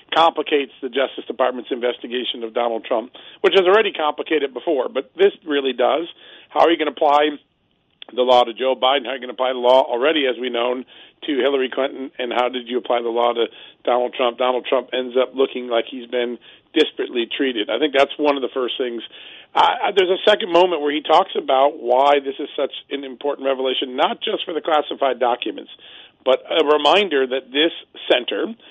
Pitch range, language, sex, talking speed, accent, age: 125-155 Hz, English, male, 205 wpm, American, 40-59